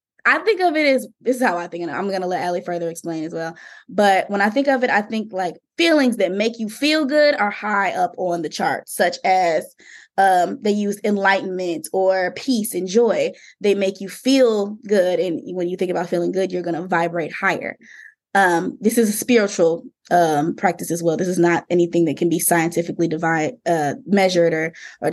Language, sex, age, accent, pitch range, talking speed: English, female, 20-39, American, 175-210 Hz, 215 wpm